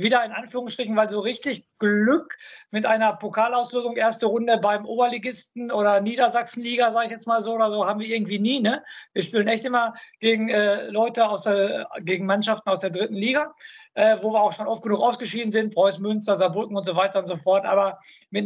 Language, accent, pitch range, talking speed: German, German, 200-235 Hz, 205 wpm